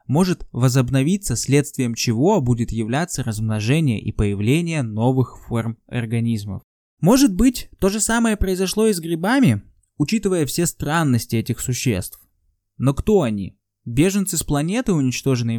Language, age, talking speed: Russian, 20-39, 125 wpm